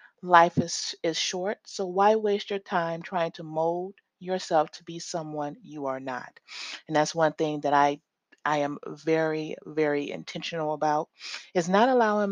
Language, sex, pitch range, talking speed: English, female, 155-185 Hz, 165 wpm